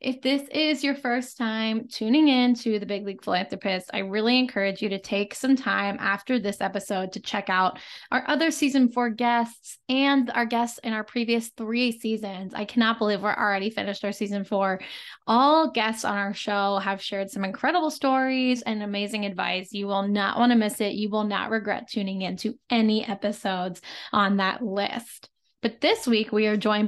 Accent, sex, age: American, female, 10-29